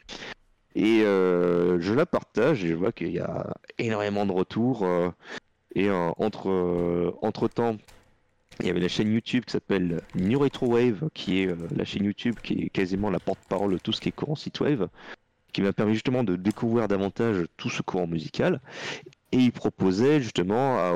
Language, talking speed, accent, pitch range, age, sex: French, 185 wpm, French, 90-115 Hz, 30-49, male